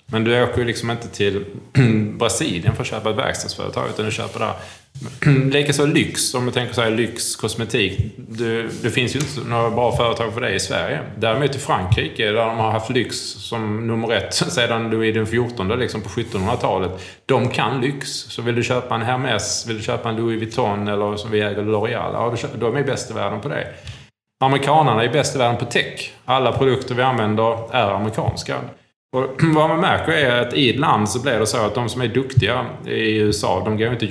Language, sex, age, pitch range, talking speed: Swedish, male, 20-39, 105-125 Hz, 210 wpm